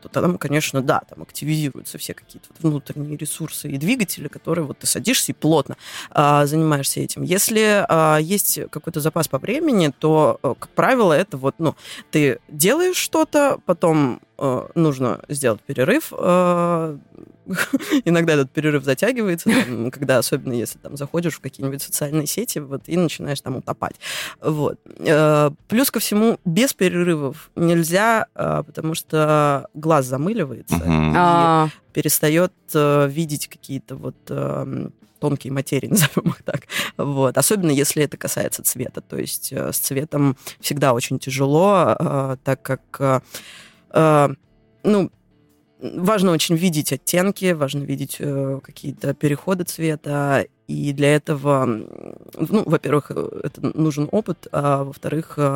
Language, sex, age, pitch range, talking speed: Russian, female, 20-39, 140-170 Hz, 120 wpm